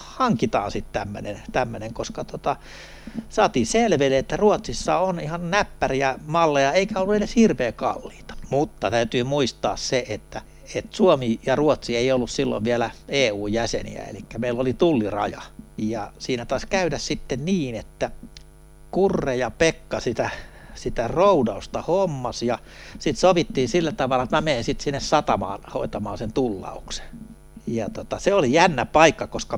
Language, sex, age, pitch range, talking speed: Finnish, male, 60-79, 125-175 Hz, 145 wpm